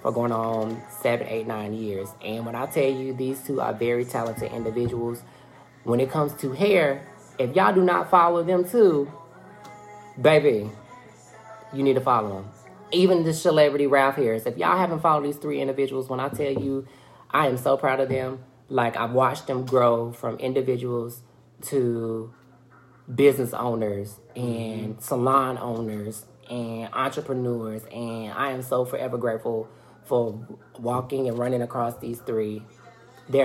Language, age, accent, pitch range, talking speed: English, 20-39, American, 115-135 Hz, 155 wpm